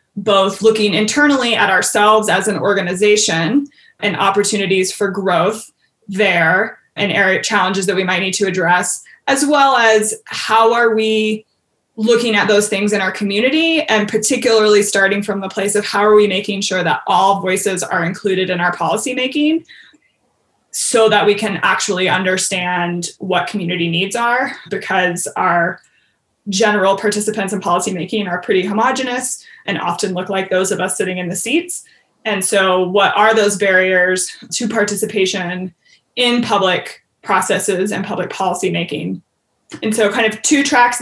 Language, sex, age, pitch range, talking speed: English, female, 20-39, 185-220 Hz, 155 wpm